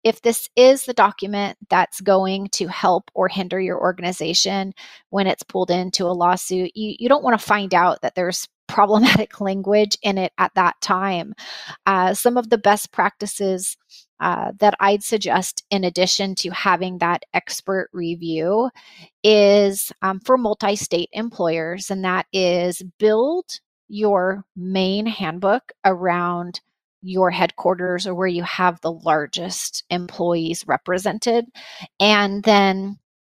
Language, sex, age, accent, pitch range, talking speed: English, female, 30-49, American, 180-210 Hz, 140 wpm